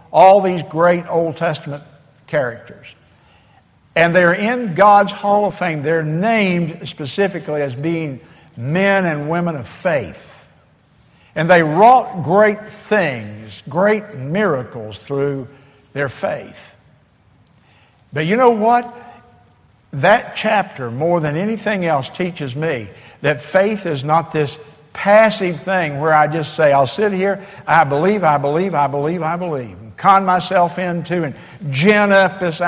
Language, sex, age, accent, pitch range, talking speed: English, male, 60-79, American, 145-200 Hz, 135 wpm